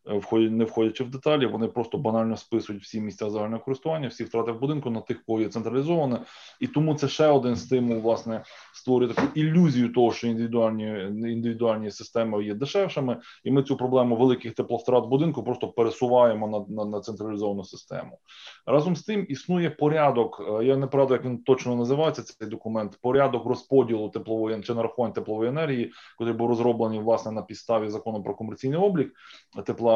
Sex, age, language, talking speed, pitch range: male, 20-39, Ukrainian, 170 wpm, 110-135 Hz